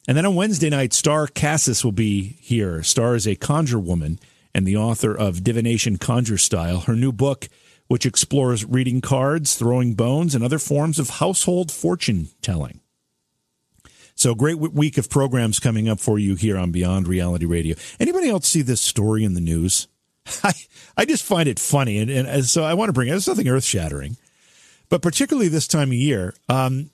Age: 50-69